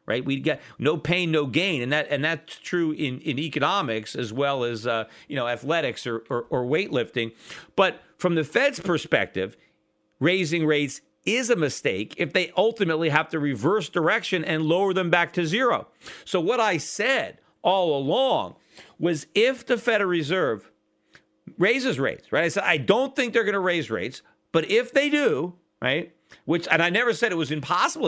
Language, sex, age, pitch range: English, male, 40-59, 135-185 Hz